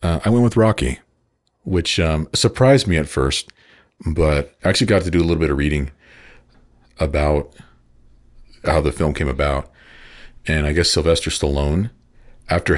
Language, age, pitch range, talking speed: English, 40-59, 70-85 Hz, 160 wpm